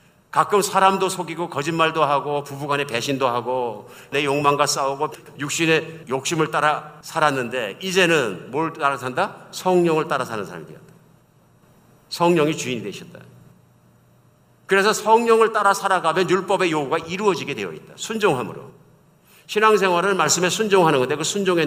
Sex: male